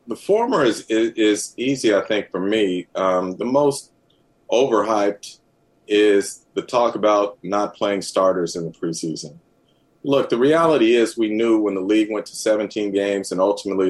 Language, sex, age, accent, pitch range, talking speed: English, male, 40-59, American, 95-110 Hz, 170 wpm